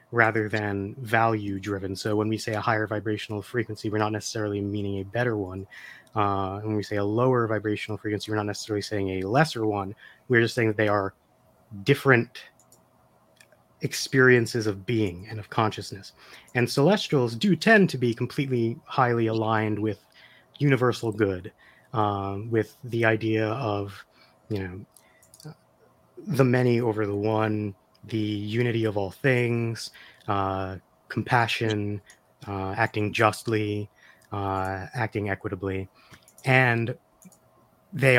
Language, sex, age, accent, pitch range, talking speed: English, male, 30-49, American, 100-120 Hz, 135 wpm